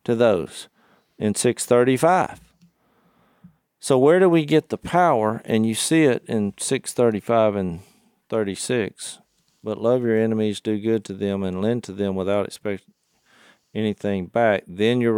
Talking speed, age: 145 wpm, 50-69